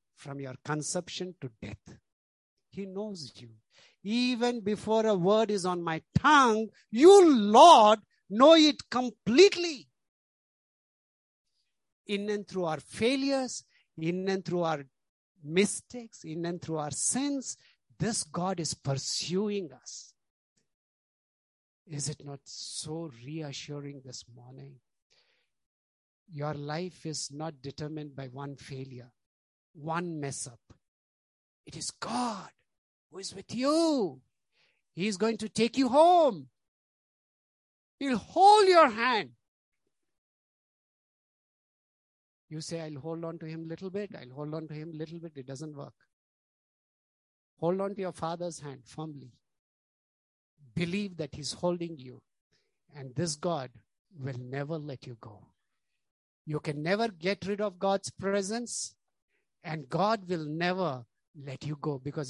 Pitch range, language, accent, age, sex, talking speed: 135-200 Hz, English, Indian, 60-79, male, 130 wpm